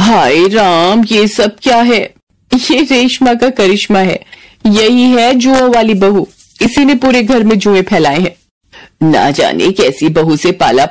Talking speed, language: 165 wpm, Hindi